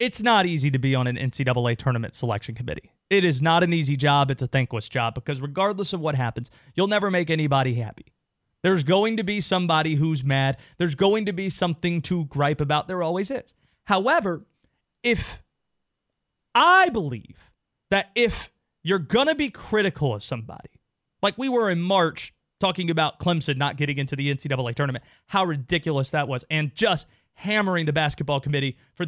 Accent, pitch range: American, 135-195 Hz